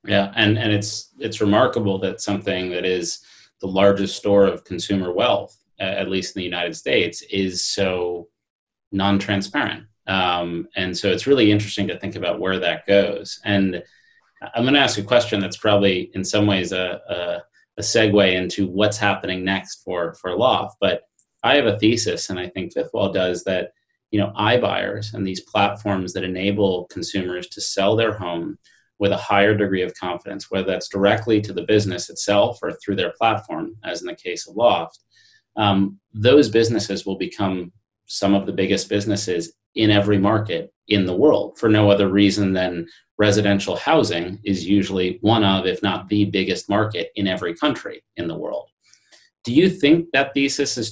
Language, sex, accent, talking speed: English, male, American, 180 wpm